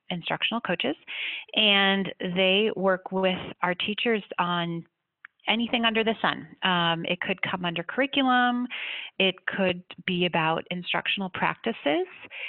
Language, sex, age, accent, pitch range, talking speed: English, female, 30-49, American, 170-220 Hz, 120 wpm